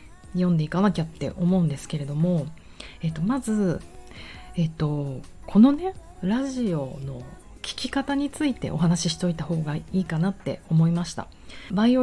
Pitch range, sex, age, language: 160-205 Hz, female, 40-59, Japanese